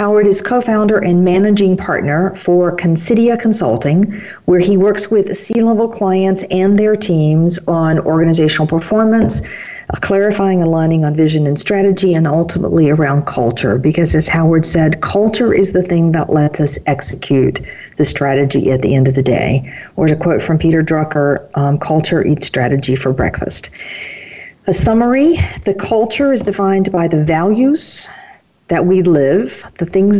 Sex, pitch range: female, 150-195 Hz